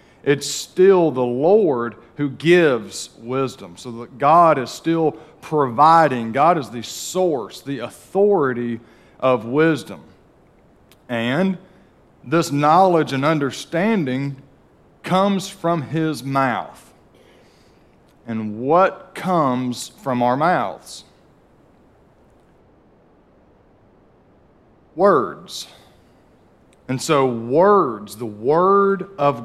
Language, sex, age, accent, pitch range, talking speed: English, male, 40-59, American, 125-160 Hz, 90 wpm